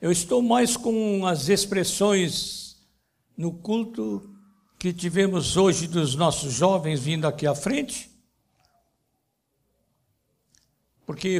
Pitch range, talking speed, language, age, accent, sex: 165-225 Hz, 100 wpm, Portuguese, 60-79, Brazilian, male